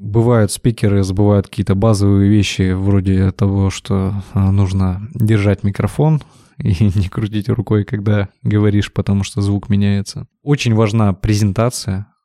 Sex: male